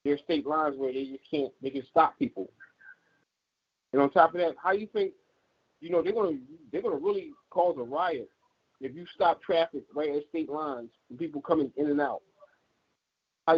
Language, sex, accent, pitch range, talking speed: English, male, American, 130-165 Hz, 190 wpm